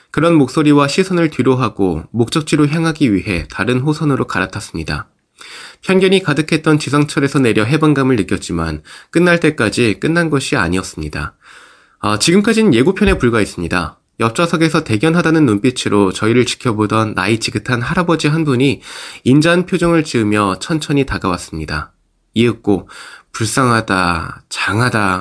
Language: Korean